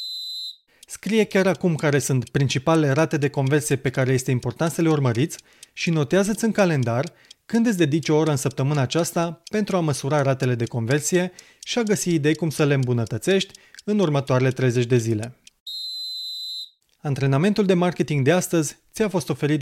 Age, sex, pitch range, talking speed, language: 30-49, male, 135-180 Hz, 170 wpm, Romanian